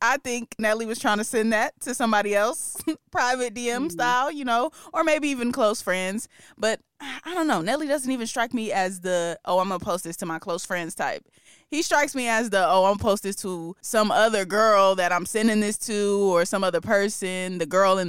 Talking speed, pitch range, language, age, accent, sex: 230 wpm, 190-245 Hz, English, 20-39, American, female